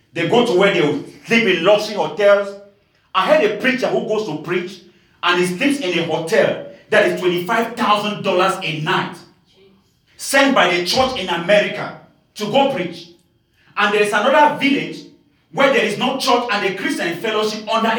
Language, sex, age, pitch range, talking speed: English, male, 40-59, 150-210 Hz, 175 wpm